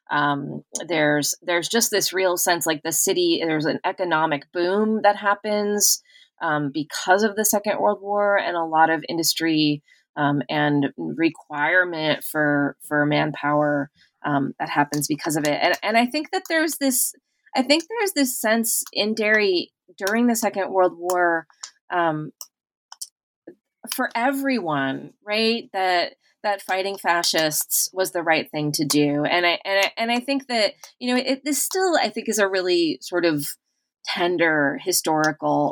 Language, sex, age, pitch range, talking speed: English, female, 20-39, 150-205 Hz, 160 wpm